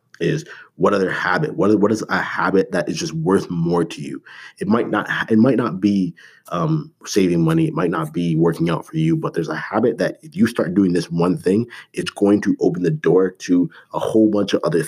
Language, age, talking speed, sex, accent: English, 30-49, 225 wpm, male, American